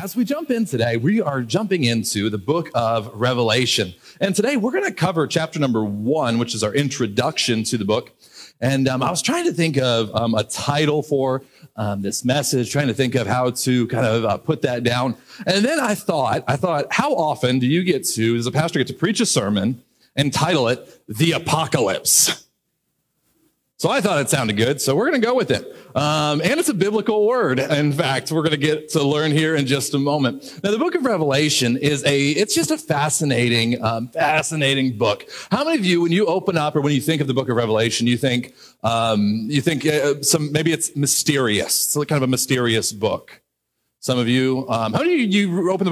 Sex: male